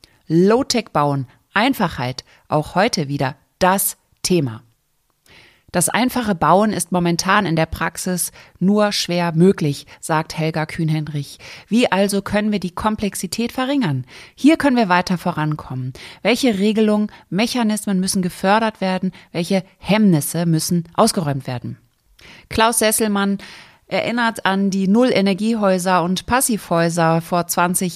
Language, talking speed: German, 115 wpm